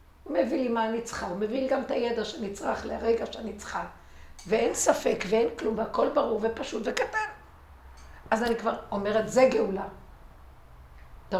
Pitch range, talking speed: 195-255 Hz, 165 wpm